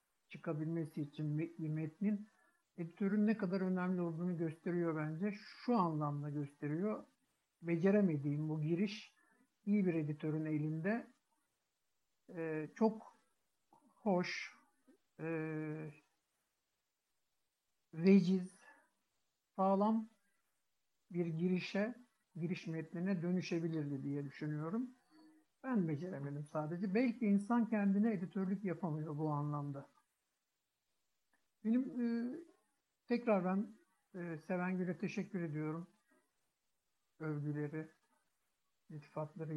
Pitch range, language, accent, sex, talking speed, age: 160-215 Hz, Turkish, native, male, 80 wpm, 60-79